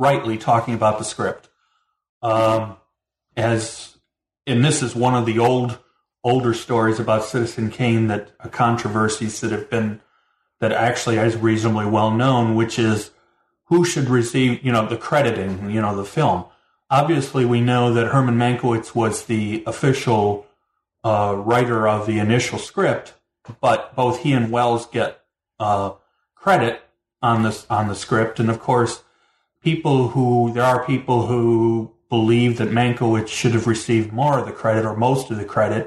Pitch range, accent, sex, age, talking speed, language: 110-125 Hz, American, male, 40-59, 160 wpm, English